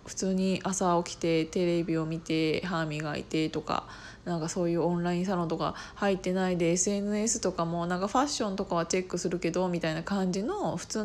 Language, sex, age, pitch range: Japanese, female, 20-39, 180-240 Hz